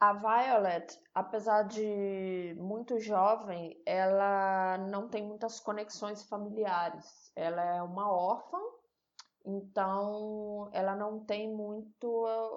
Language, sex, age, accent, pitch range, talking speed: Portuguese, female, 20-39, Brazilian, 195-245 Hz, 100 wpm